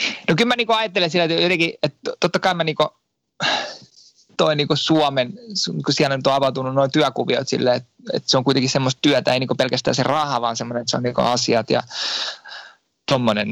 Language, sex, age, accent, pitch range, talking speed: Finnish, male, 20-39, native, 120-145 Hz, 200 wpm